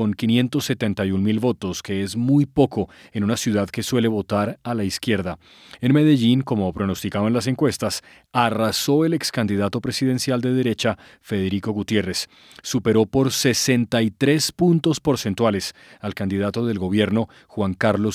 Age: 40-59